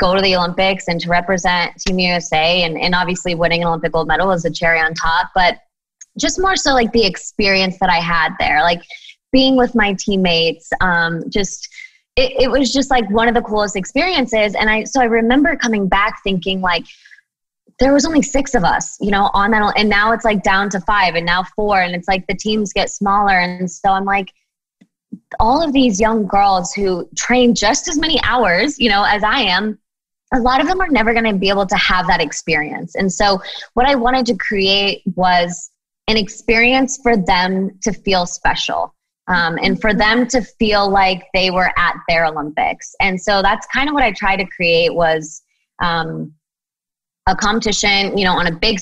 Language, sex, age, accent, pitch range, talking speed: English, female, 20-39, American, 180-235 Hz, 205 wpm